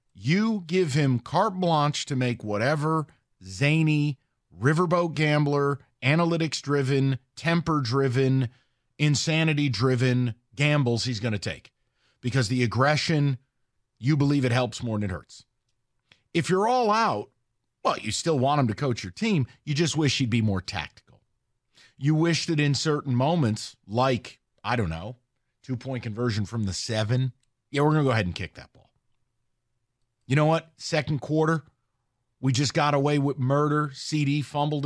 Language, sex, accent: English, male, American